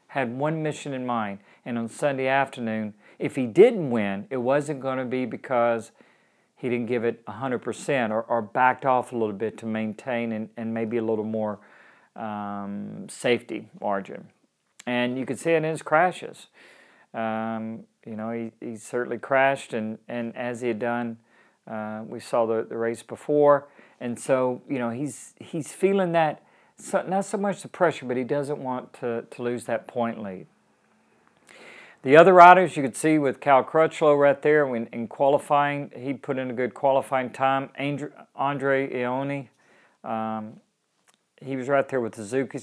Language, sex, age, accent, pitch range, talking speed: English, male, 40-59, American, 115-145 Hz, 175 wpm